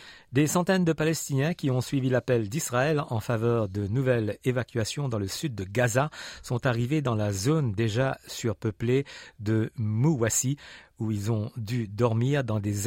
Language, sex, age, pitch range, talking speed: French, male, 50-69, 110-145 Hz, 165 wpm